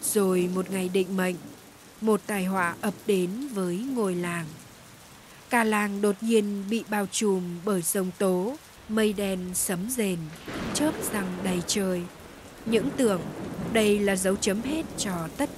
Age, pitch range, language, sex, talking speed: 20-39, 190-225 Hz, Vietnamese, female, 155 wpm